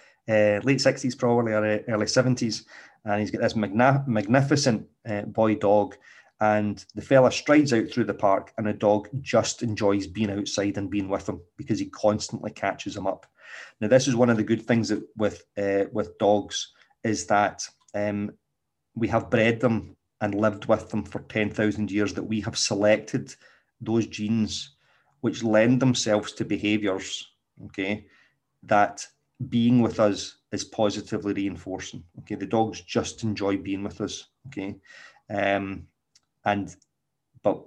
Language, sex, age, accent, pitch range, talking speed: English, male, 30-49, British, 100-115 Hz, 160 wpm